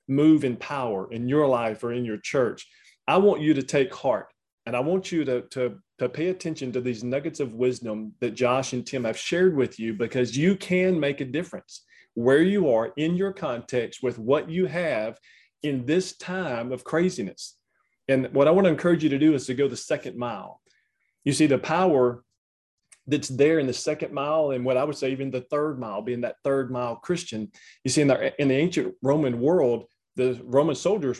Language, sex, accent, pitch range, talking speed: English, male, American, 125-160 Hz, 210 wpm